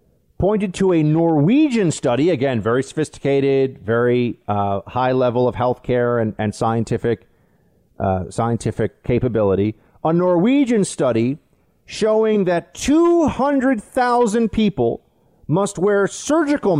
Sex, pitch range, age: male, 125-190 Hz, 40-59